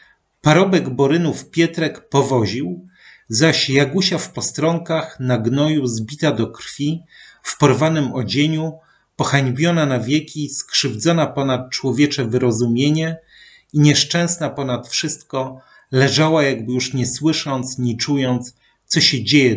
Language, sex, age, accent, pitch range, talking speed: Polish, male, 40-59, native, 120-150 Hz, 115 wpm